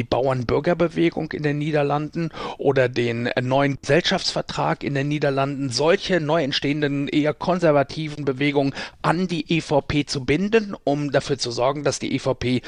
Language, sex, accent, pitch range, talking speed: German, male, German, 130-160 Hz, 140 wpm